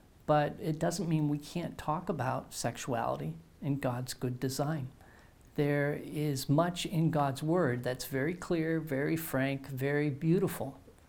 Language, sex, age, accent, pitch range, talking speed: English, male, 50-69, American, 135-155 Hz, 140 wpm